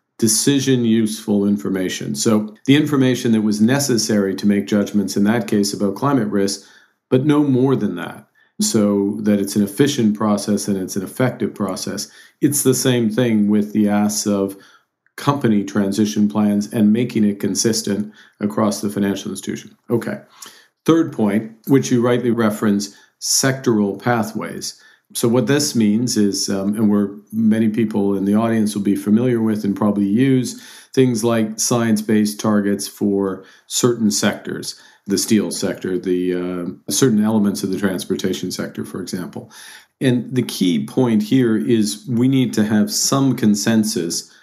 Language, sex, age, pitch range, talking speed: English, male, 50-69, 100-120 Hz, 155 wpm